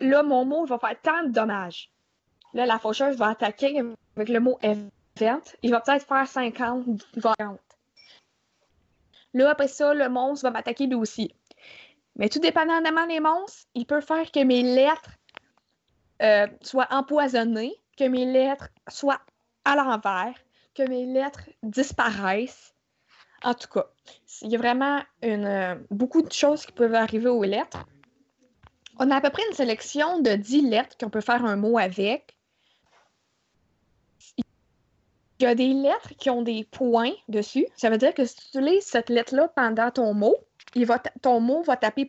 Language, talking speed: French, 170 wpm